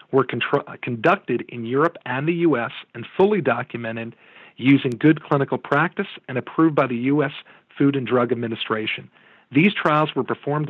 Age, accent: 40-59, American